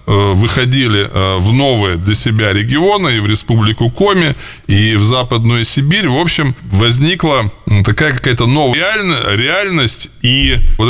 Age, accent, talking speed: 20-39, native, 125 wpm